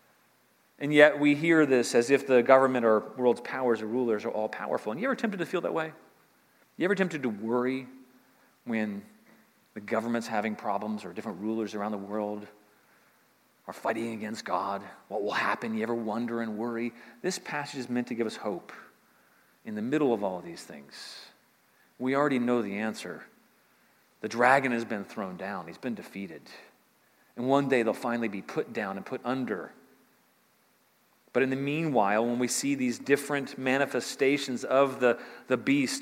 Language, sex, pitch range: English, male, 115-145 Hz